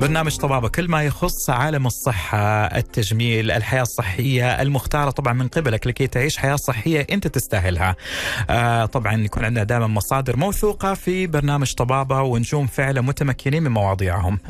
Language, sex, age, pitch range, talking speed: Arabic, male, 30-49, 115-160 Hz, 145 wpm